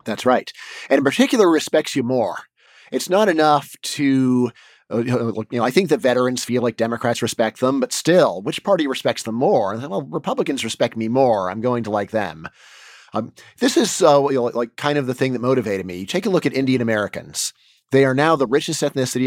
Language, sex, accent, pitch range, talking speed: English, male, American, 115-140 Hz, 210 wpm